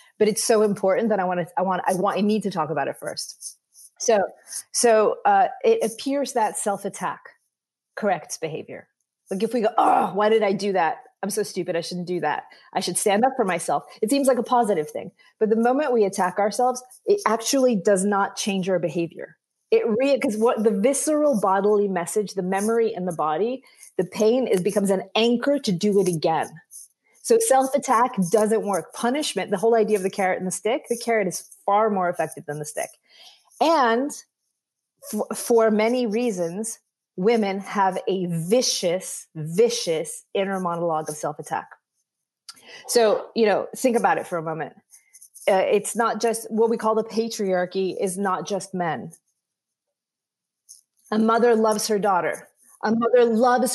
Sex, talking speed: female, 180 wpm